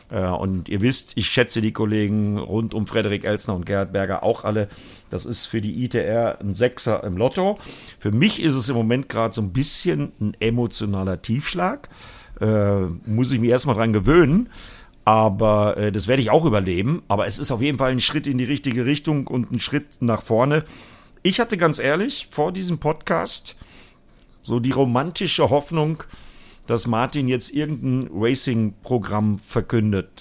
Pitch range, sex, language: 105-135 Hz, male, German